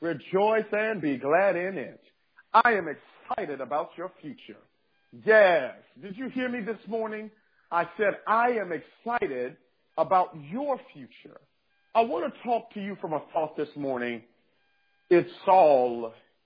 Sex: male